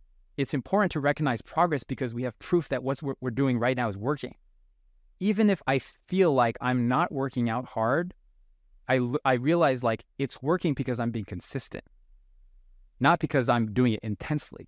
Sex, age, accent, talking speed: male, 20-39, American, 175 wpm